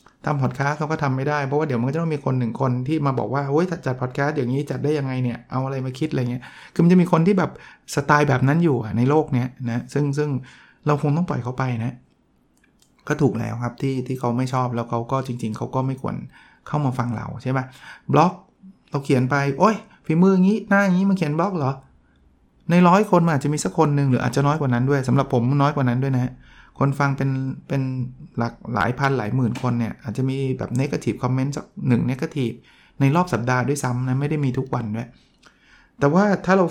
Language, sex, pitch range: Thai, male, 125-150 Hz